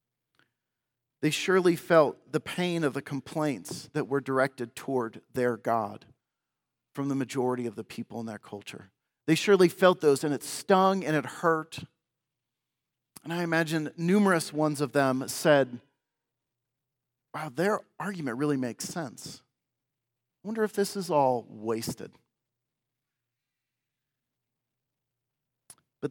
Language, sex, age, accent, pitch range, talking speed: English, male, 40-59, American, 130-185 Hz, 125 wpm